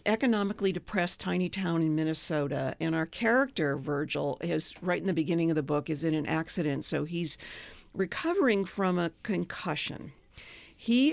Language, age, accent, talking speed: English, 50-69, American, 155 wpm